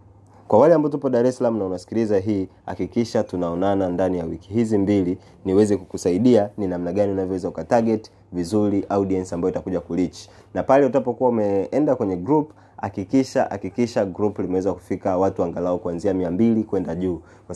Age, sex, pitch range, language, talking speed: 30-49, male, 90-110 Hz, Swahili, 160 wpm